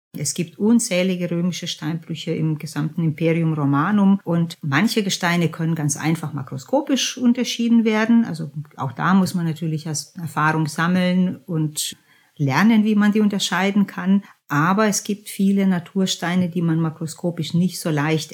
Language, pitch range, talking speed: German, 155-195 Hz, 145 wpm